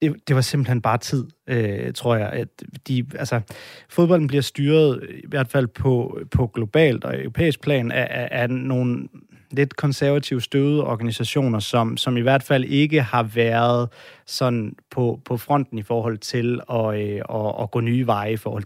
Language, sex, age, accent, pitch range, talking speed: Danish, male, 30-49, native, 115-140 Hz, 165 wpm